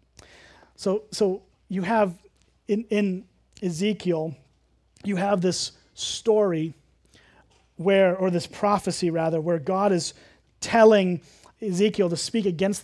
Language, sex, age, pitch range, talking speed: English, male, 30-49, 175-215 Hz, 110 wpm